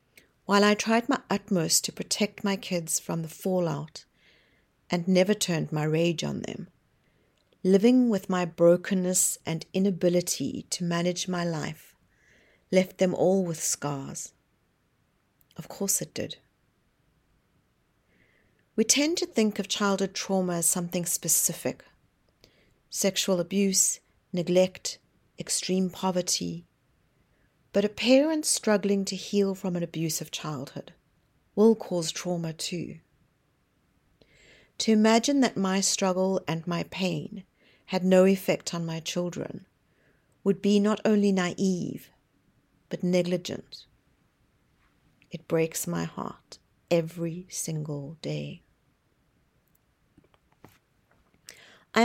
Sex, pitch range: female, 165-200 Hz